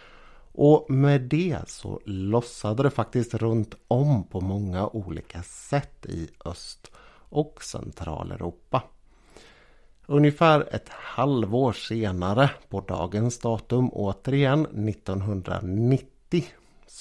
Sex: male